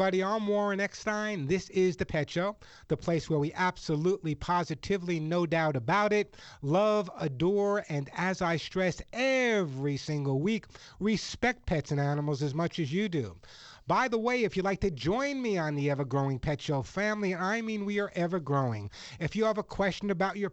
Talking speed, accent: 185 wpm, American